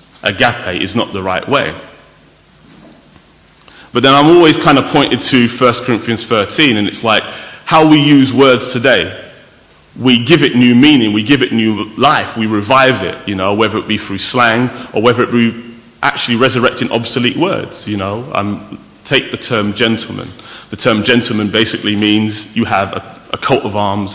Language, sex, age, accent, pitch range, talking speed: English, male, 30-49, British, 110-145 Hz, 180 wpm